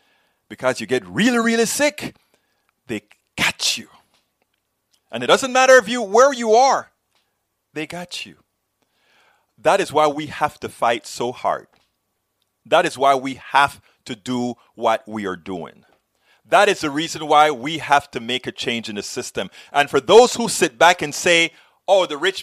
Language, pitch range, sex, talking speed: English, 140-195 Hz, male, 170 wpm